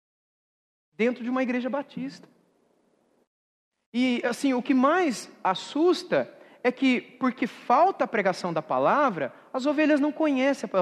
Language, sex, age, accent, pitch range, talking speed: Portuguese, male, 40-59, Brazilian, 220-325 Hz, 130 wpm